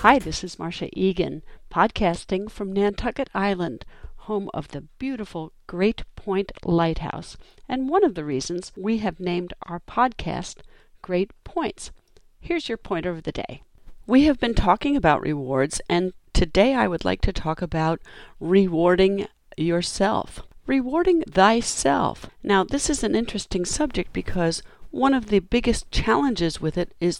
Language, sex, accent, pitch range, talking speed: English, female, American, 155-210 Hz, 150 wpm